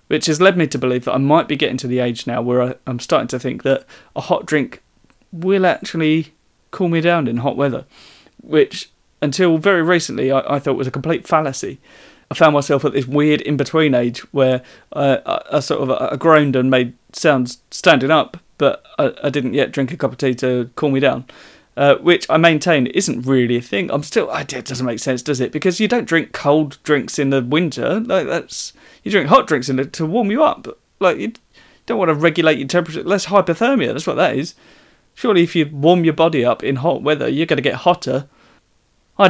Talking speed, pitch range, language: 215 wpm, 130-165 Hz, English